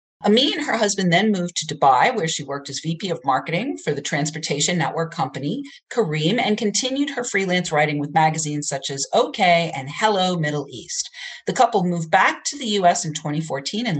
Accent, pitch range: American, 160-235 Hz